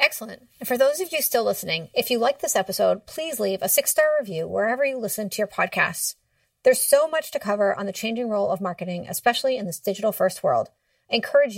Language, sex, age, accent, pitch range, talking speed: English, female, 30-49, American, 195-250 Hz, 225 wpm